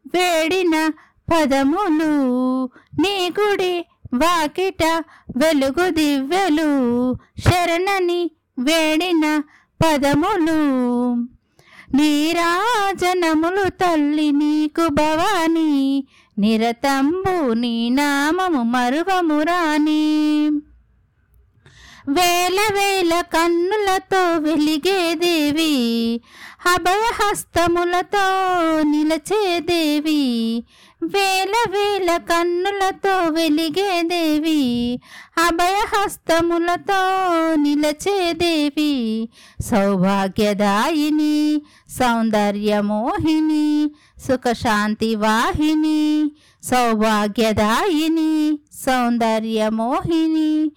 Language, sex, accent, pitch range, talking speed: Telugu, female, native, 280-355 Hz, 45 wpm